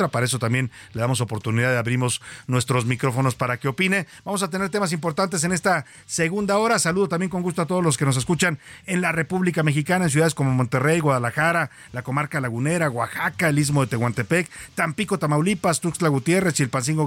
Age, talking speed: 40-59, 190 wpm